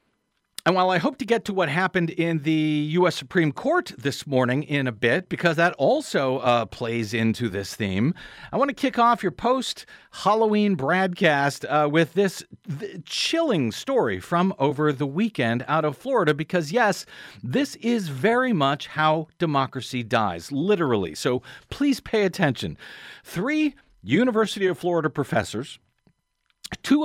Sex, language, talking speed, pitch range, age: male, English, 150 wpm, 135-200 Hz, 40-59